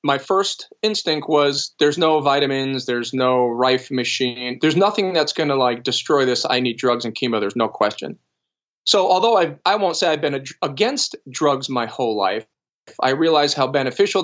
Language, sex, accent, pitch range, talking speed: English, male, American, 130-175 Hz, 180 wpm